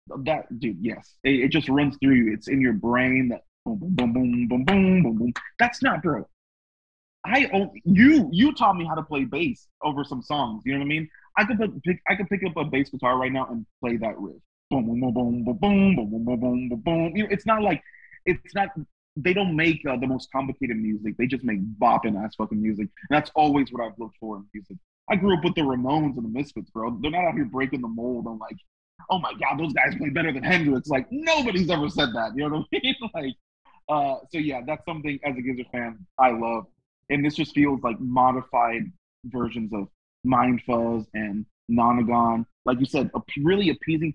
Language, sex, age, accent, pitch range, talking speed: English, male, 20-39, American, 120-165 Hz, 225 wpm